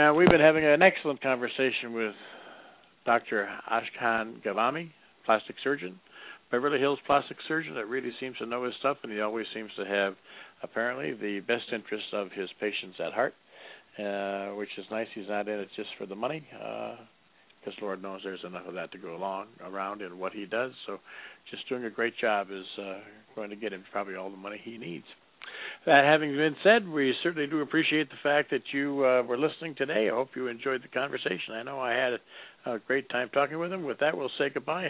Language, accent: English, American